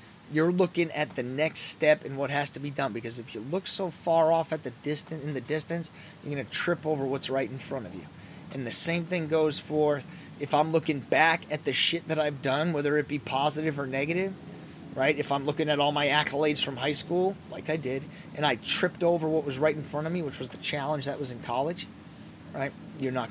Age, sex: 30-49, male